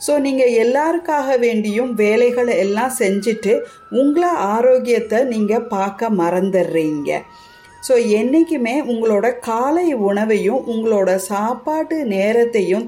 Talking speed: 95 wpm